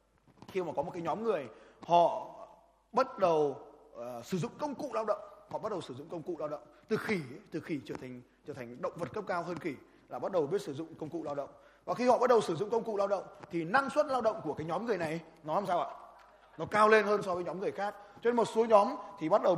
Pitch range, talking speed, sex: 155-215 Hz, 280 wpm, male